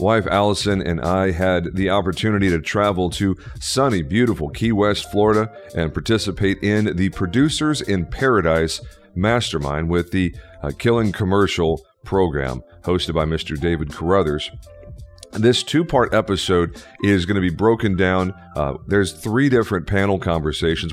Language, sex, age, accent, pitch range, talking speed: English, male, 40-59, American, 85-105 Hz, 140 wpm